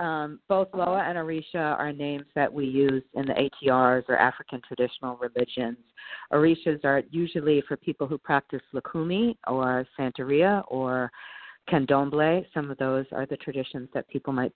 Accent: American